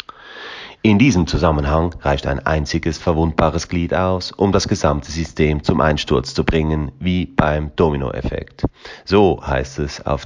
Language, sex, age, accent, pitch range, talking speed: German, male, 30-49, German, 80-95 Hz, 140 wpm